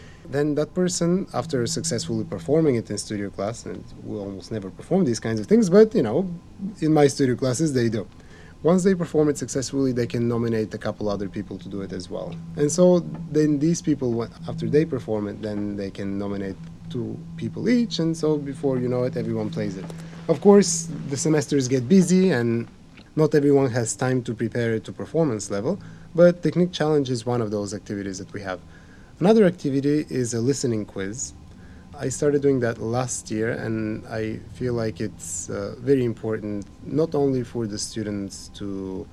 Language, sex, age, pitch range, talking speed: English, male, 30-49, 105-150 Hz, 190 wpm